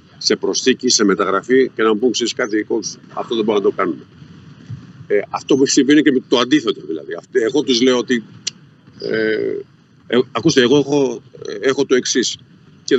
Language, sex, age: Greek, male, 50-69